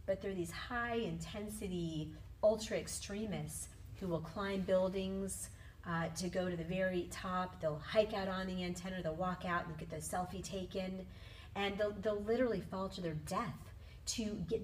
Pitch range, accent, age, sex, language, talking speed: 155-210 Hz, American, 40-59, female, English, 165 wpm